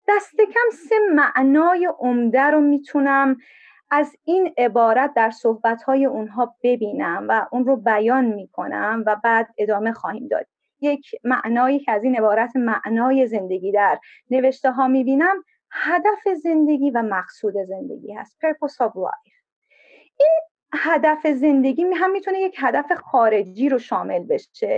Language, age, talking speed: Persian, 30-49, 135 wpm